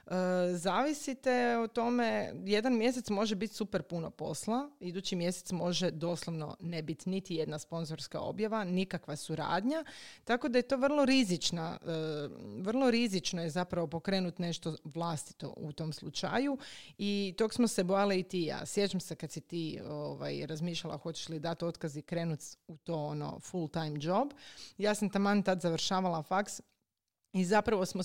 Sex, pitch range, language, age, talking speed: female, 165-210 Hz, Croatian, 30-49, 155 wpm